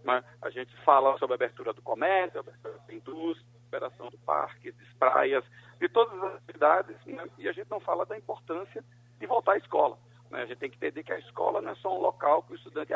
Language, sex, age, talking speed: Portuguese, male, 50-69, 235 wpm